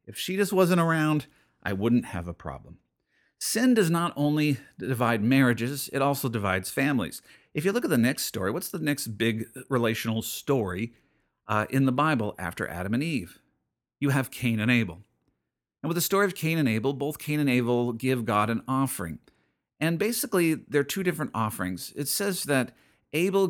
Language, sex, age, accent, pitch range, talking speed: English, male, 50-69, American, 110-145 Hz, 185 wpm